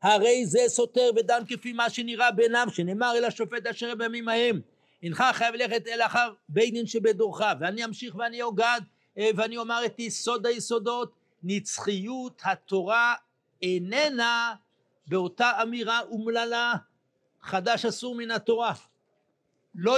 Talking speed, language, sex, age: 125 wpm, Hebrew, male, 60-79